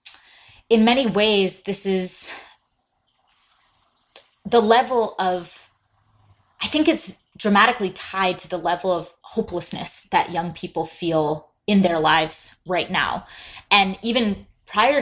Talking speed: 120 wpm